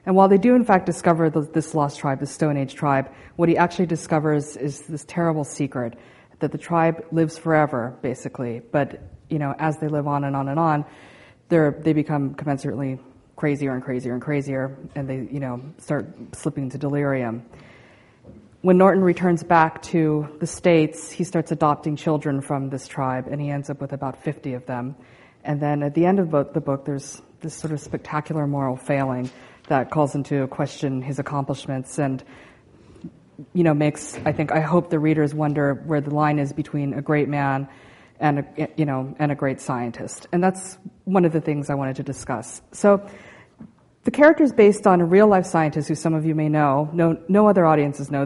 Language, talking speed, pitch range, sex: English, 195 wpm, 140-165 Hz, female